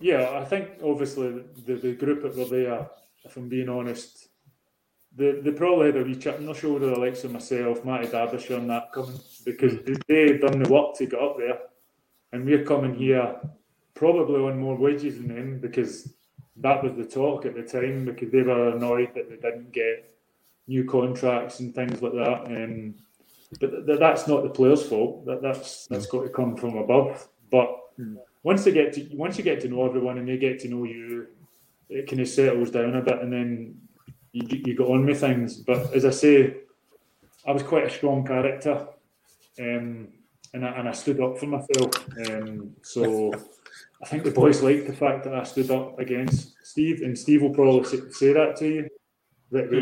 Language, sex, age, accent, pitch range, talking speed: English, male, 20-39, British, 125-140 Hz, 200 wpm